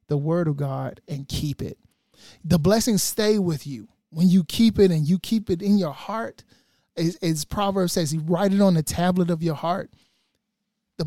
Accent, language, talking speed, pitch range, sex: American, English, 200 wpm, 155-210 Hz, male